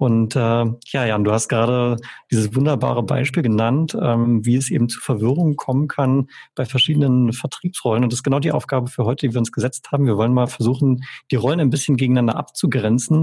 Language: German